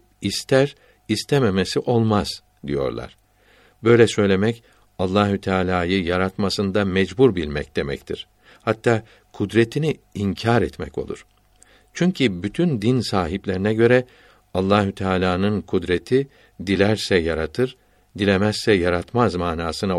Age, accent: 60-79, native